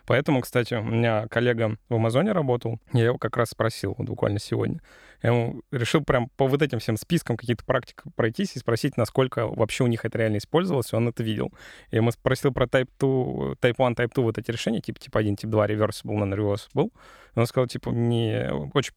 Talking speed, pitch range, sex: 205 wpm, 110-130 Hz, male